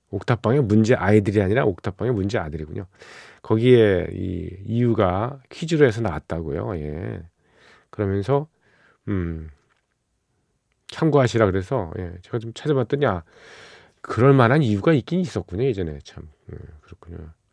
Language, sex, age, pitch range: Korean, male, 40-59, 90-130 Hz